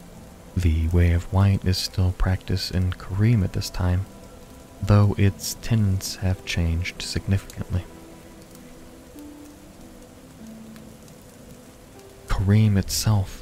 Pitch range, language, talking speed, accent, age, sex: 85-100 Hz, English, 90 wpm, American, 30-49, male